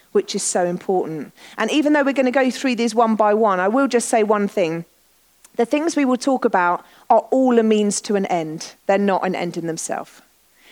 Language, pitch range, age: English, 195-265 Hz, 40-59